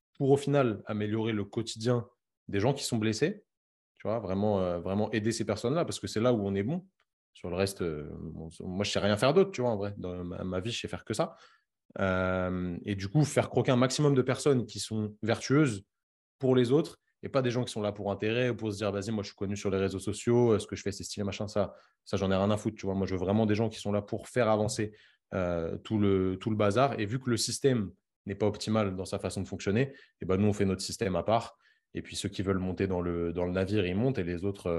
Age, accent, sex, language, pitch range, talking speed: 20-39, French, male, French, 95-115 Hz, 280 wpm